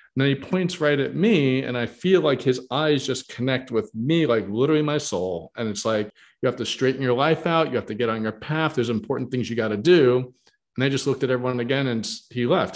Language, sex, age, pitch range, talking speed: English, male, 40-59, 120-155 Hz, 260 wpm